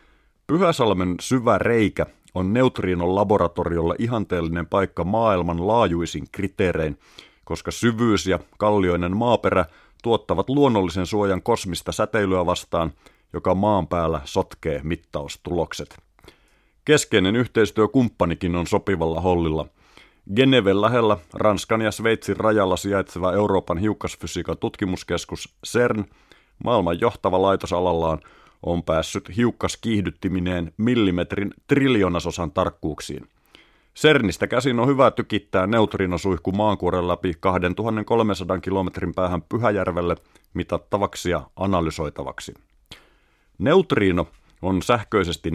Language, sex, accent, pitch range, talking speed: Finnish, male, native, 85-110 Hz, 90 wpm